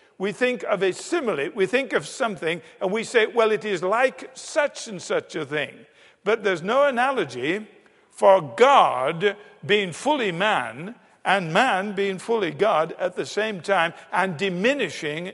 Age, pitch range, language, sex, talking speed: 50-69, 180-250 Hz, English, male, 160 wpm